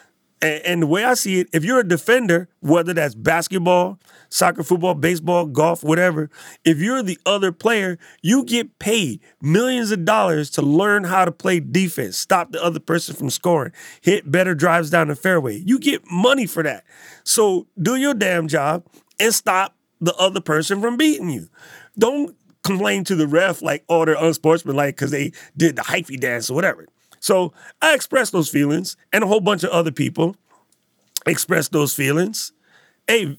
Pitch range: 155-210 Hz